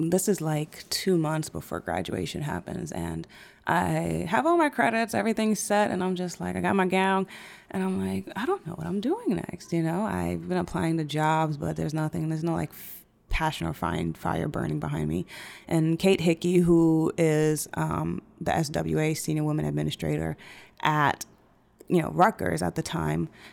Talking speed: 185 wpm